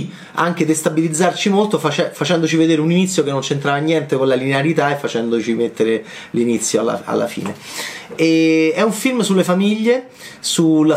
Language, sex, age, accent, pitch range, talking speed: Italian, male, 30-49, native, 135-170 Hz, 155 wpm